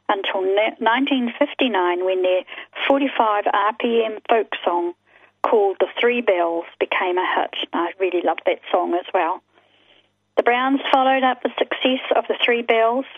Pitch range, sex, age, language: 195-265 Hz, female, 40-59, English